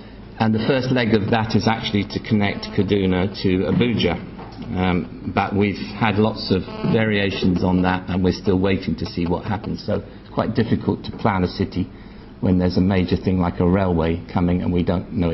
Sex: male